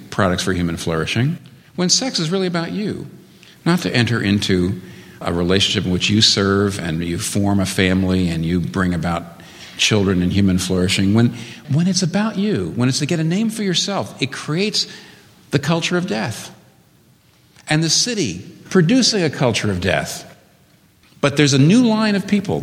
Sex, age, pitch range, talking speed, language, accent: male, 50-69, 100-170 Hz, 180 wpm, English, American